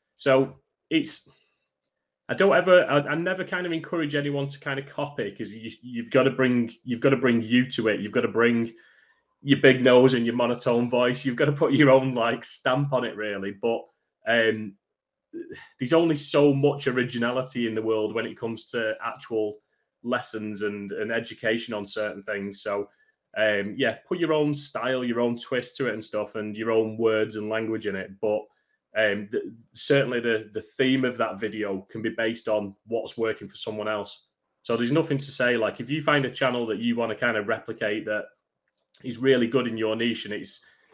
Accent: British